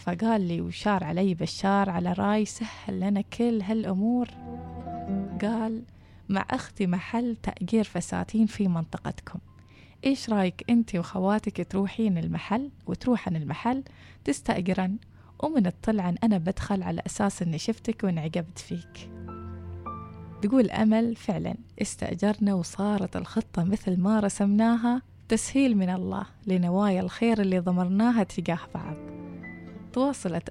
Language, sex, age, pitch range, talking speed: Arabic, female, 20-39, 175-220 Hz, 110 wpm